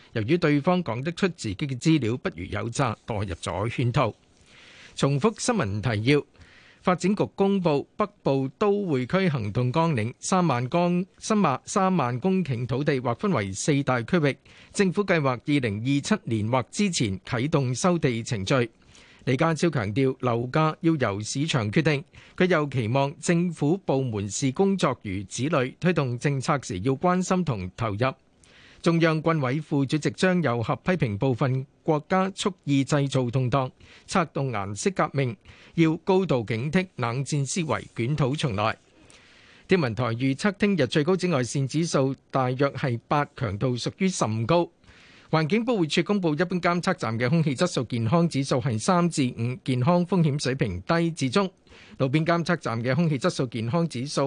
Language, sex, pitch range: Chinese, male, 125-175 Hz